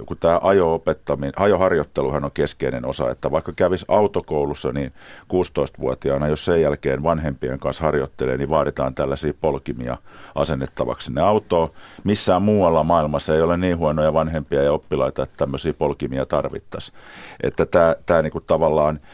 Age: 50-69